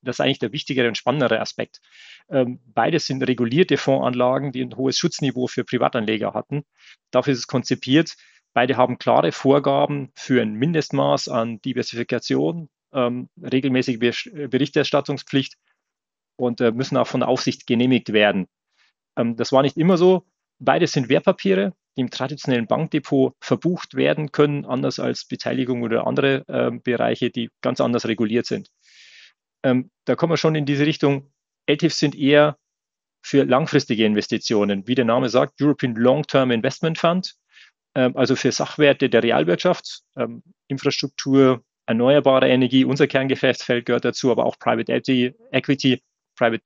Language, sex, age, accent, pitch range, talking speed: German, male, 40-59, German, 125-145 Hz, 140 wpm